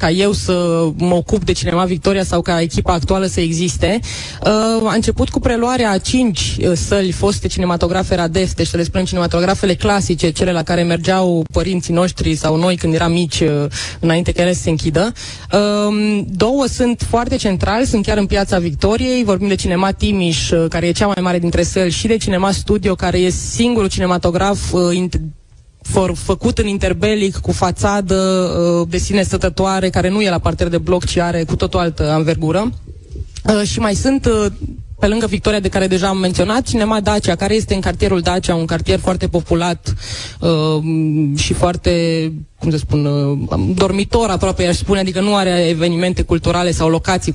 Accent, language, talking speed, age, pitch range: native, Romanian, 175 wpm, 20-39, 170-210 Hz